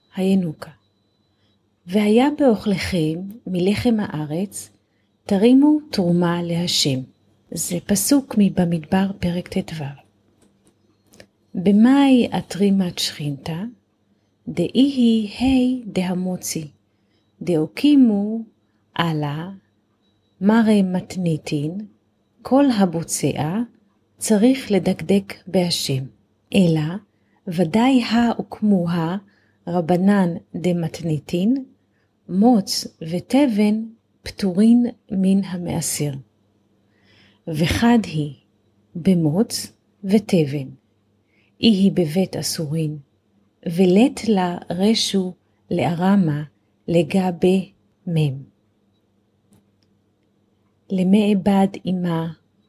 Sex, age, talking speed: female, 40-59, 60 wpm